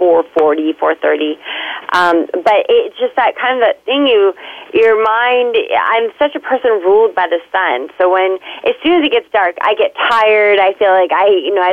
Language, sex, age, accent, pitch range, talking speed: English, female, 30-49, American, 185-265 Hz, 205 wpm